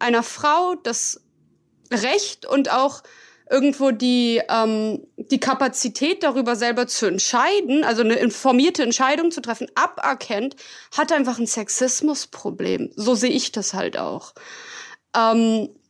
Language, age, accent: German, 20-39, German